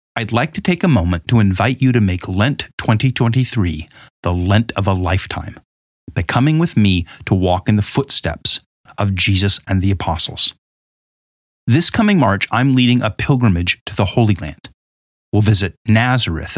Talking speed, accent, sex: 165 wpm, American, male